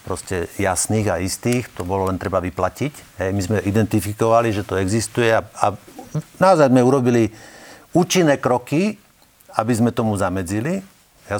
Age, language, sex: 50-69, Slovak, male